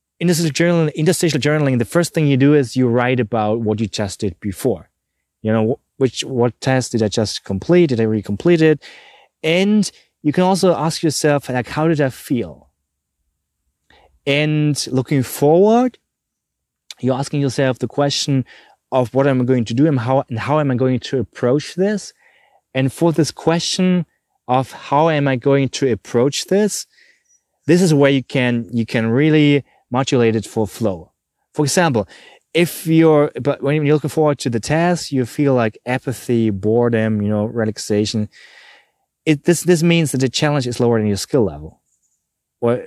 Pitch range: 115-155 Hz